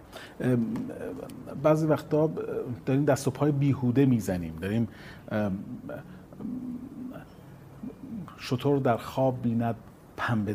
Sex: male